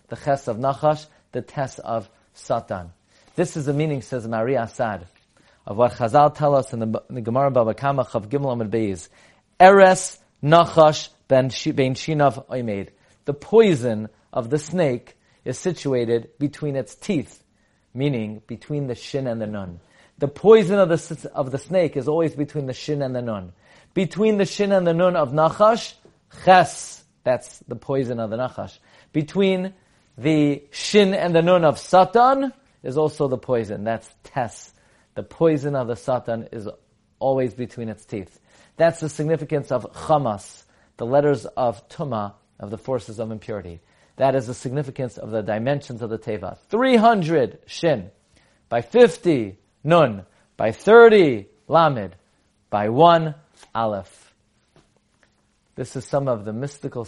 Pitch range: 115-155 Hz